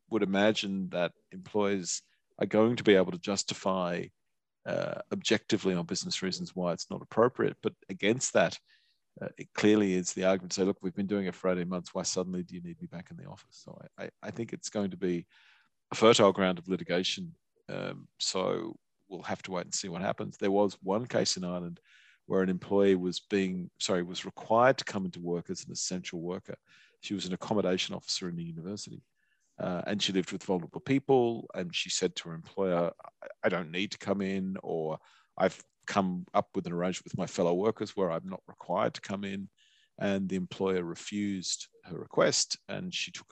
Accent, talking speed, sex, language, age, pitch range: Australian, 205 wpm, male, English, 40-59, 90-105 Hz